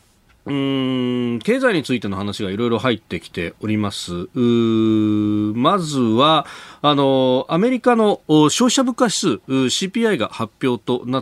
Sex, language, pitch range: male, Japanese, 115-185 Hz